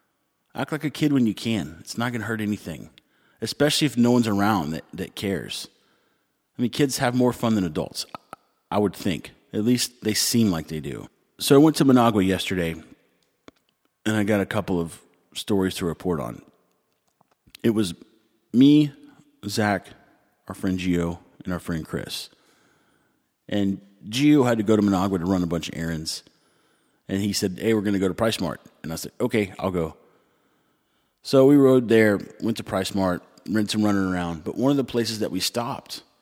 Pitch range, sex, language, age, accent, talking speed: 90-115 Hz, male, English, 40-59, American, 190 wpm